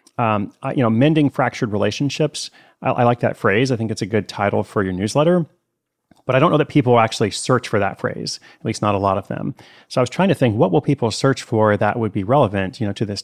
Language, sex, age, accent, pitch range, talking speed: English, male, 30-49, American, 100-125 Hz, 265 wpm